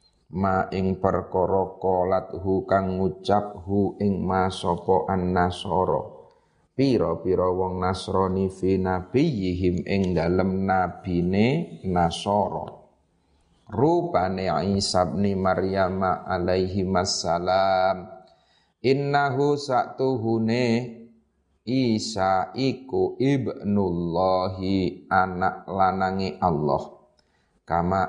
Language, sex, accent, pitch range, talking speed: Indonesian, male, native, 90-100 Hz, 70 wpm